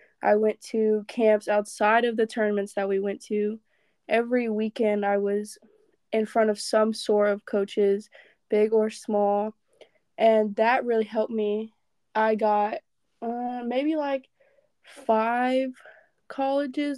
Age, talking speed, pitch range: 20-39, 135 wpm, 210-230 Hz